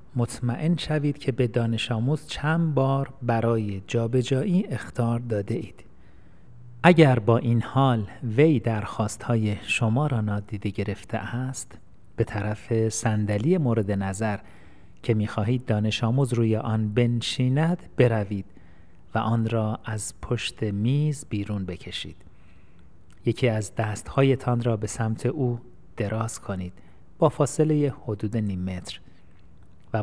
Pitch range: 100-125 Hz